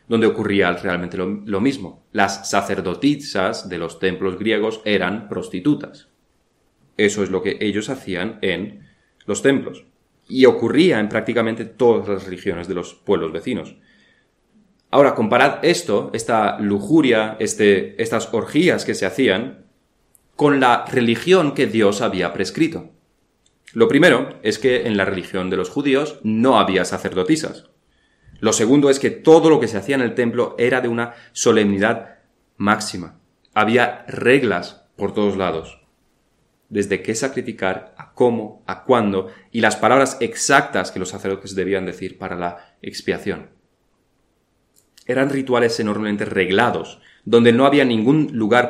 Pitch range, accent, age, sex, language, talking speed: 95-120 Hz, Spanish, 30-49, male, Spanish, 140 wpm